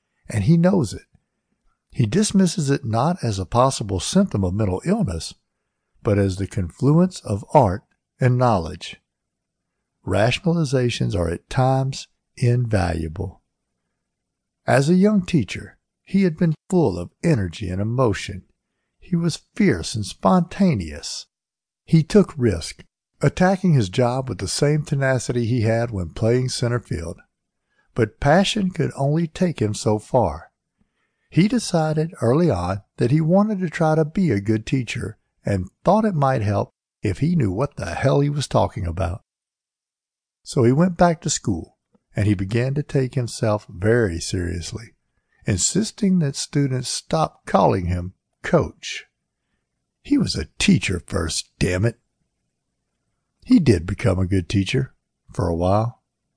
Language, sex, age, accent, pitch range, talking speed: English, male, 60-79, American, 100-160 Hz, 145 wpm